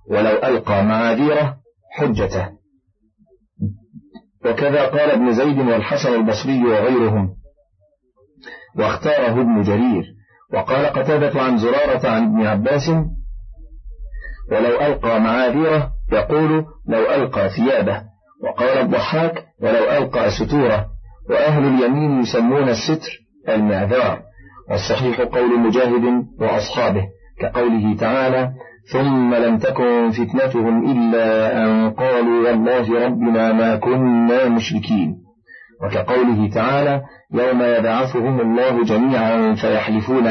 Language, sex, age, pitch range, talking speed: Arabic, male, 40-59, 110-130 Hz, 95 wpm